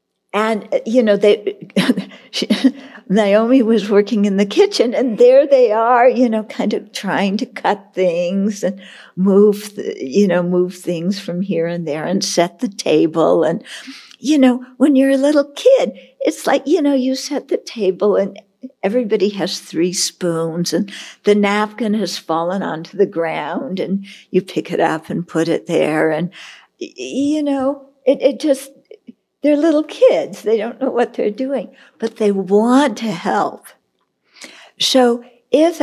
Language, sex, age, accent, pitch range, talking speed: English, female, 60-79, American, 195-265 Hz, 160 wpm